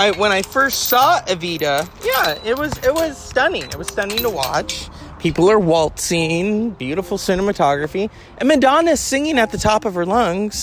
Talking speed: 175 wpm